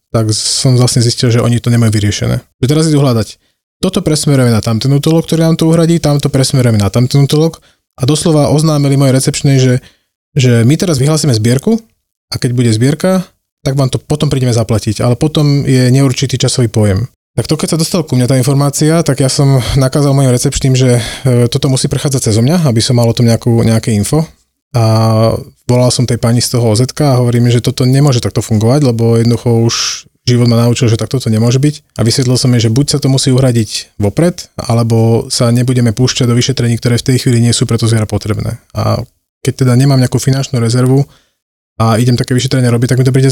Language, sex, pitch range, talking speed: Slovak, male, 115-140 Hz, 210 wpm